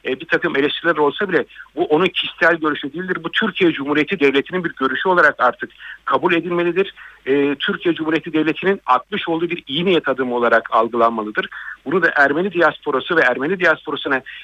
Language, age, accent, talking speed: Turkish, 50-69, native, 165 wpm